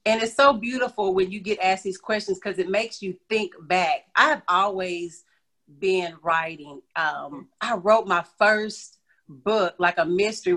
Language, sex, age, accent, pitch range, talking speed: English, female, 40-59, American, 170-210 Hz, 170 wpm